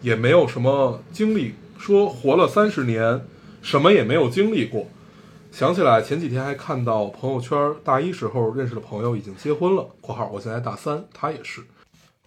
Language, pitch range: Chinese, 115-150 Hz